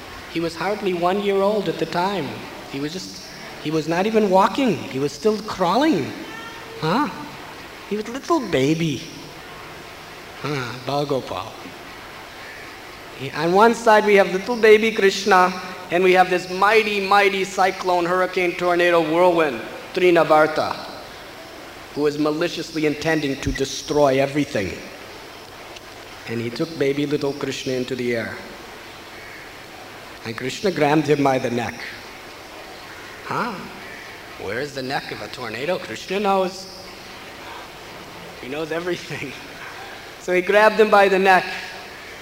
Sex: male